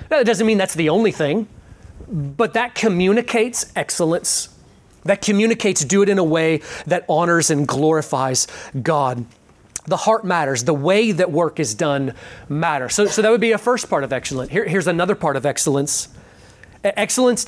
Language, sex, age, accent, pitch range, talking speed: English, male, 30-49, American, 145-200 Hz, 170 wpm